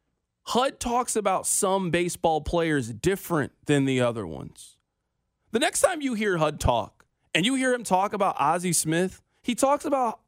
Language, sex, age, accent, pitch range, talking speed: English, male, 20-39, American, 135-195 Hz, 170 wpm